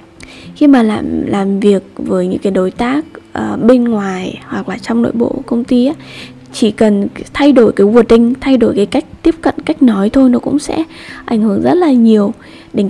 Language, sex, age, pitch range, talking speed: Vietnamese, female, 10-29, 200-255 Hz, 210 wpm